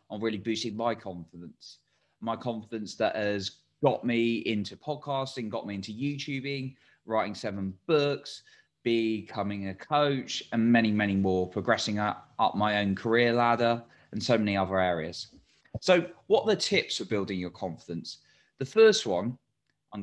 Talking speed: 155 wpm